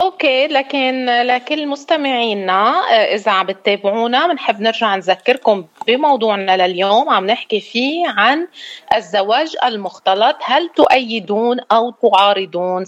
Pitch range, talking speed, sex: 195-260 Hz, 100 wpm, female